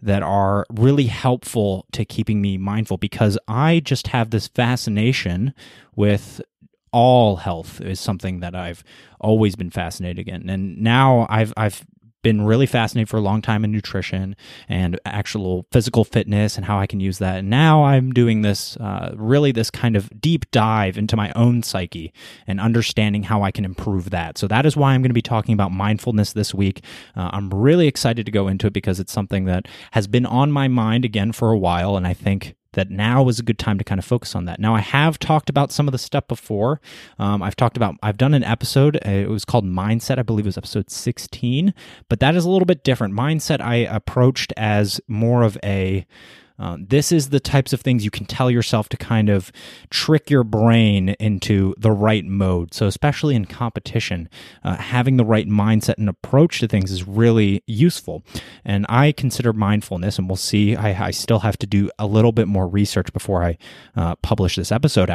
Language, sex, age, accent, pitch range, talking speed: English, male, 20-39, American, 100-120 Hz, 205 wpm